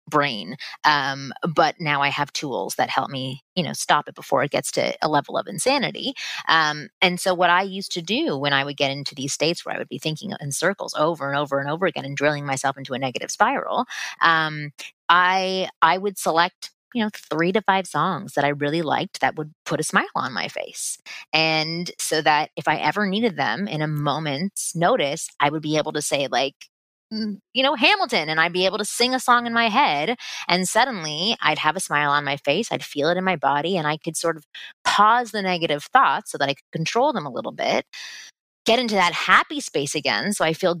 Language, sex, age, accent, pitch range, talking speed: English, female, 20-39, American, 150-215 Hz, 230 wpm